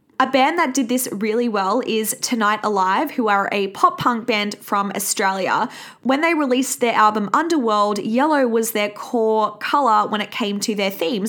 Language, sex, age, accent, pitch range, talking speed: English, female, 20-39, Australian, 210-255 Hz, 185 wpm